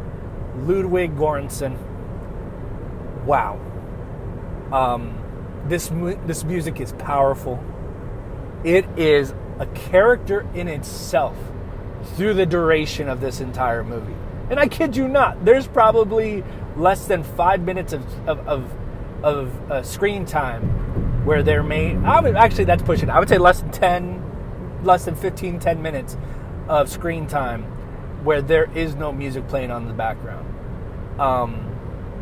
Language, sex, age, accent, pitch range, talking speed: English, male, 30-49, American, 115-170 Hz, 140 wpm